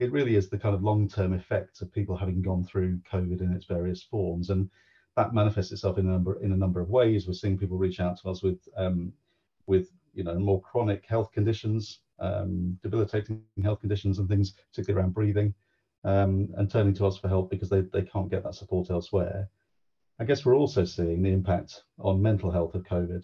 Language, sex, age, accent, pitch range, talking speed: English, male, 40-59, British, 90-100 Hz, 210 wpm